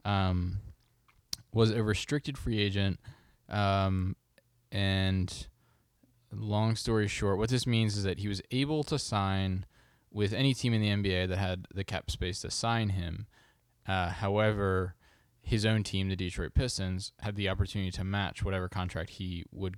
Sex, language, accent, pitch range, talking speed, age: male, English, American, 90-110 Hz, 160 wpm, 20-39